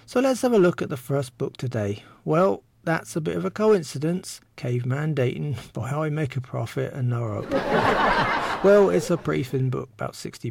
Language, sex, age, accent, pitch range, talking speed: English, male, 40-59, British, 120-165 Hz, 195 wpm